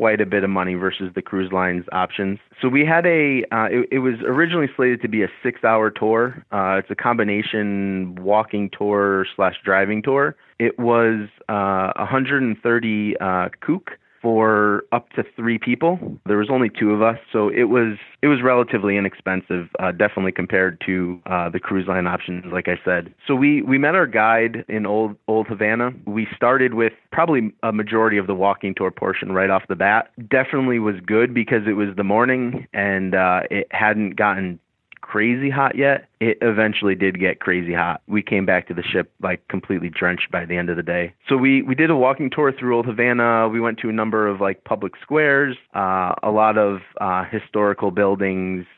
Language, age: English, 30-49